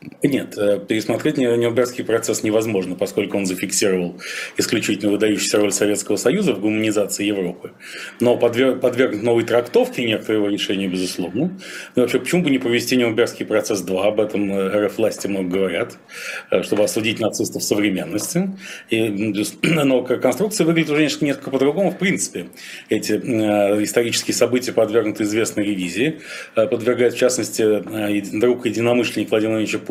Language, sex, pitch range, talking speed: Russian, male, 105-125 Hz, 130 wpm